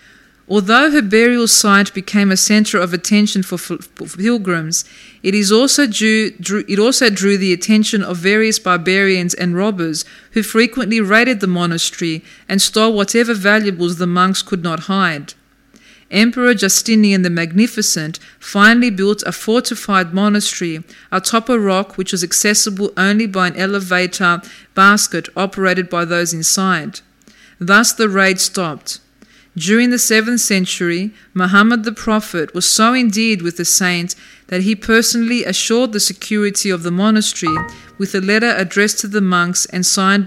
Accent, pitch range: Australian, 180-220 Hz